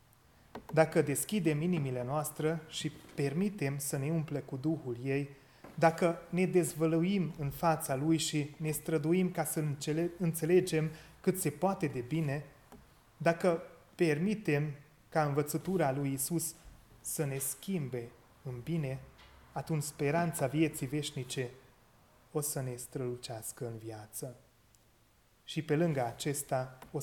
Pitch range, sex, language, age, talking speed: 125-160 Hz, male, Hungarian, 30-49, 120 wpm